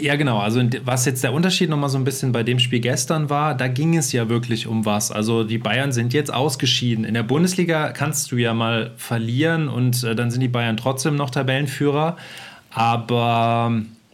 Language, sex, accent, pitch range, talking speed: German, male, German, 120-140 Hz, 200 wpm